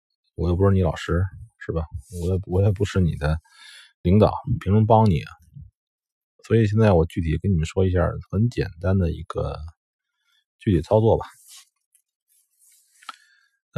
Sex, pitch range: male, 85-110 Hz